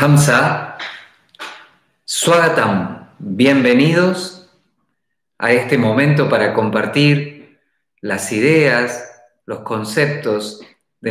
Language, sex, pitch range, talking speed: Spanish, male, 110-150 Hz, 70 wpm